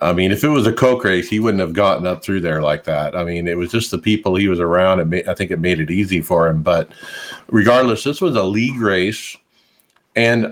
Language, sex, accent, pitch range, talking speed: English, male, American, 95-125 Hz, 255 wpm